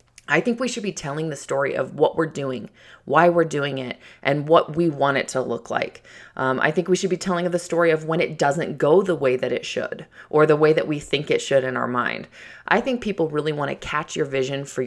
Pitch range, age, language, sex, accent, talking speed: 150-190 Hz, 20-39, English, female, American, 260 wpm